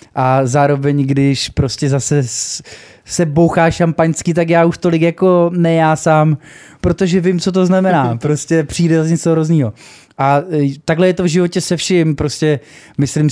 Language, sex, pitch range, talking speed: Czech, male, 120-150 Hz, 155 wpm